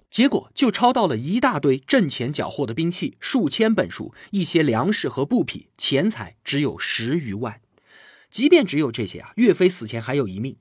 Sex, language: male, Chinese